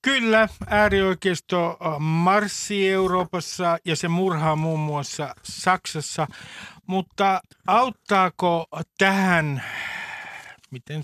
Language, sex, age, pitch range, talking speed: Finnish, male, 50-69, 145-190 Hz, 75 wpm